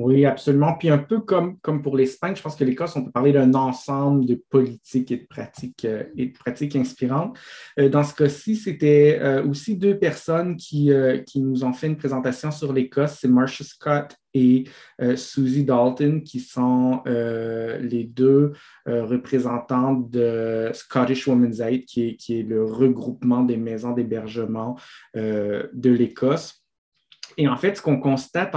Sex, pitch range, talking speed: male, 125-145 Hz, 160 wpm